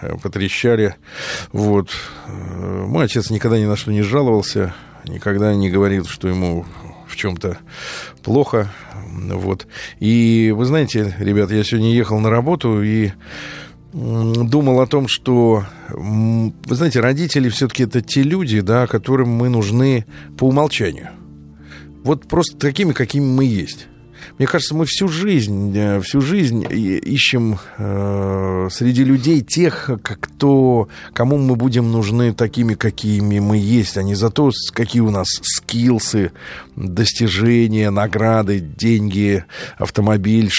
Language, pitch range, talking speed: Russian, 100-125 Hz, 120 wpm